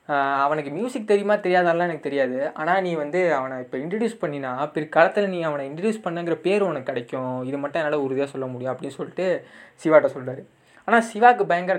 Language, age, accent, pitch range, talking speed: Tamil, 20-39, native, 150-195 Hz, 185 wpm